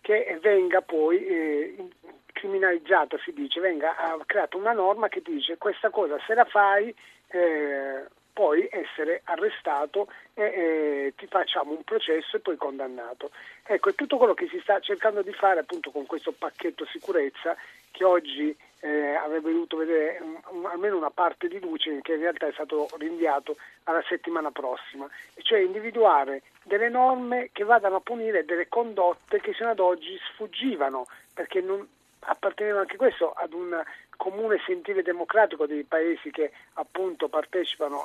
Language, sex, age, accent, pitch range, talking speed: Italian, male, 40-59, native, 160-230 Hz, 155 wpm